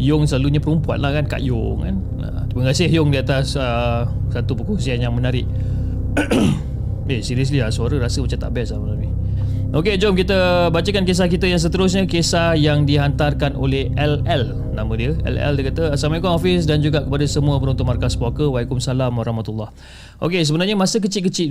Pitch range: 115-150 Hz